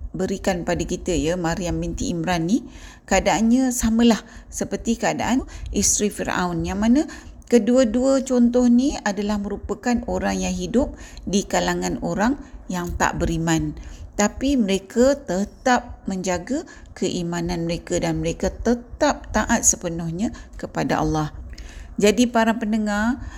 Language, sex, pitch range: Malay, female, 175-220 Hz